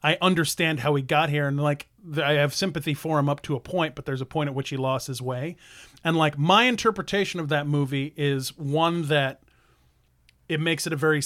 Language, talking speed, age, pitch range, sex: English, 225 wpm, 30-49, 140-165 Hz, male